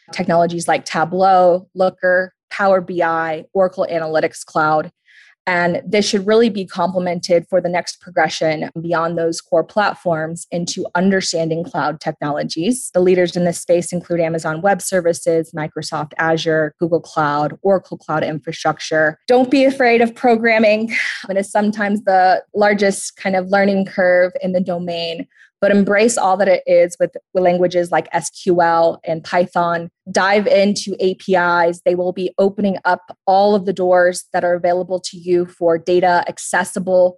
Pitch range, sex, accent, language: 170-190 Hz, female, American, English